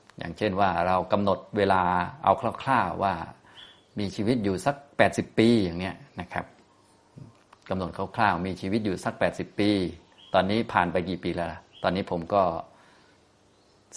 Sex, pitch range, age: male, 90-110 Hz, 30-49